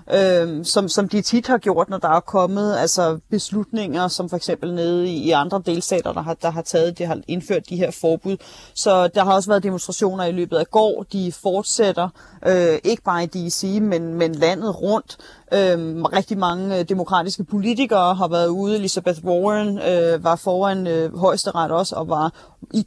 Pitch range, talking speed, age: 175-210 Hz, 190 wpm, 30-49